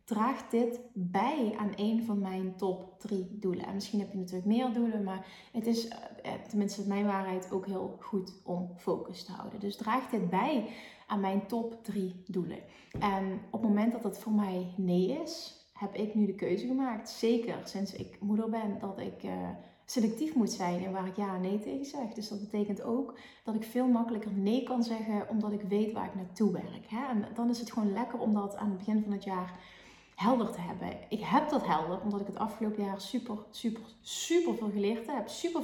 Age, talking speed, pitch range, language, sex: 30-49, 205 wpm, 195-225 Hz, Dutch, female